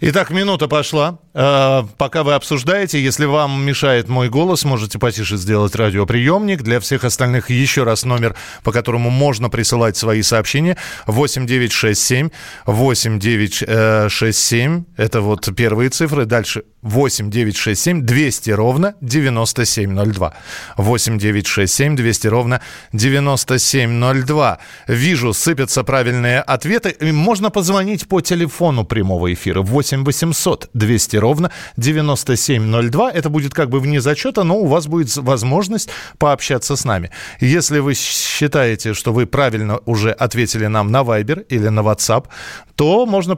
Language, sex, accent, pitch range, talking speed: Russian, male, native, 110-150 Hz, 145 wpm